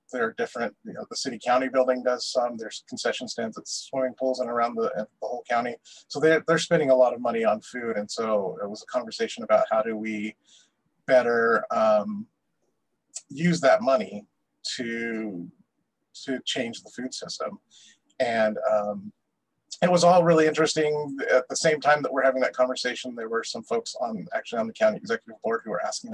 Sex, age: male, 30-49